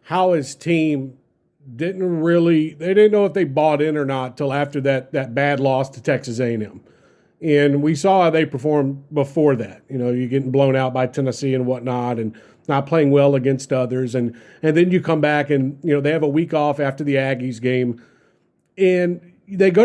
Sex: male